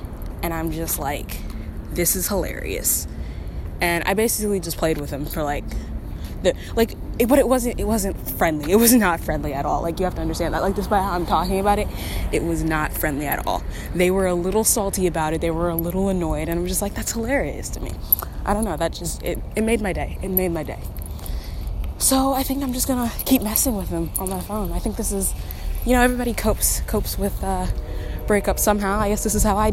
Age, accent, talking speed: 10-29, American, 235 wpm